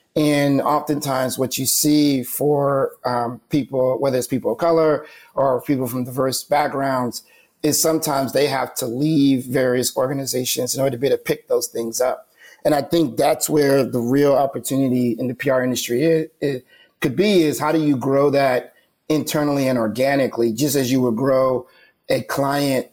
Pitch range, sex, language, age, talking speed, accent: 130-150 Hz, male, English, 30-49, 180 wpm, American